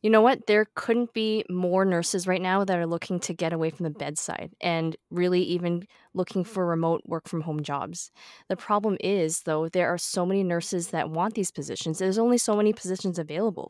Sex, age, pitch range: female, 20-39, 165-200 Hz